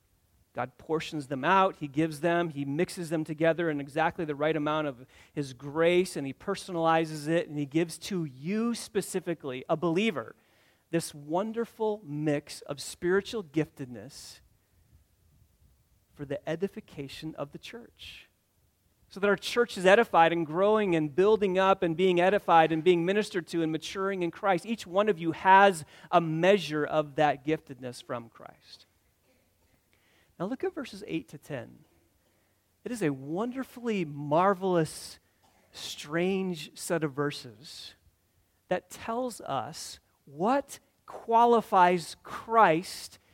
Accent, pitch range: American, 140-190 Hz